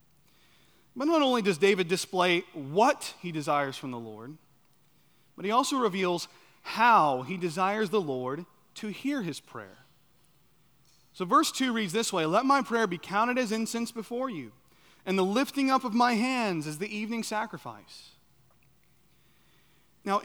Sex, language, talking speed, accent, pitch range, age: male, English, 155 wpm, American, 155-210 Hz, 30-49